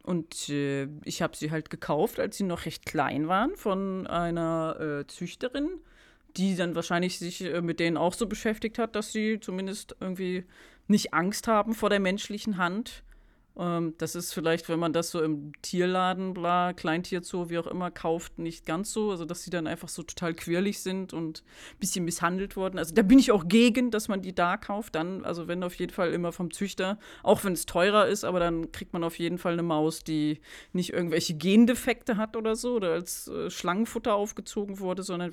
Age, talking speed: 30-49, 200 wpm